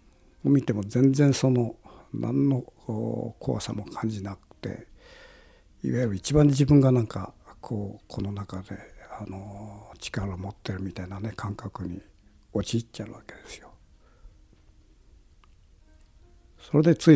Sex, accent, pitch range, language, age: male, native, 95-135 Hz, Japanese, 60-79